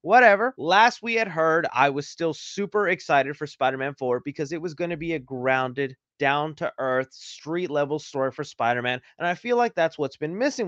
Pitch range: 145-215 Hz